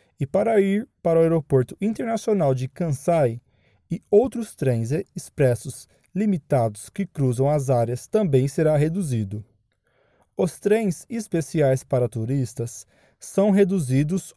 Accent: Brazilian